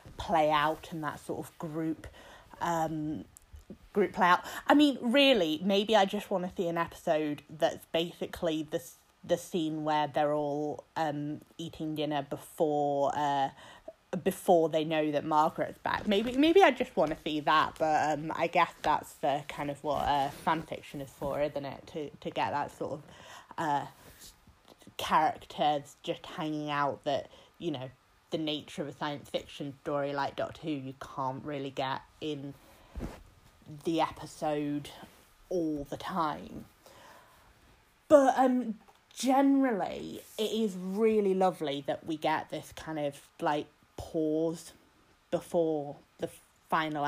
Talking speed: 150 wpm